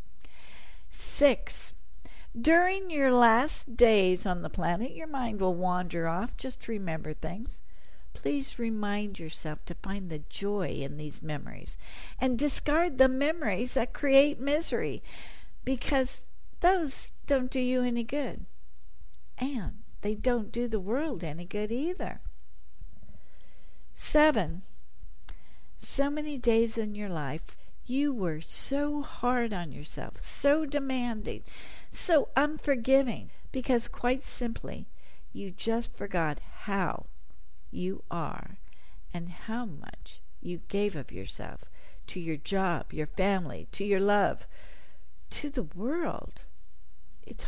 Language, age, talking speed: English, 60-79, 120 wpm